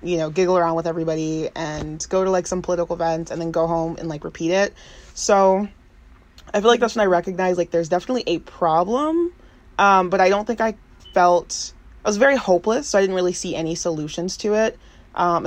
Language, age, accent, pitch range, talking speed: English, 20-39, American, 160-185 Hz, 215 wpm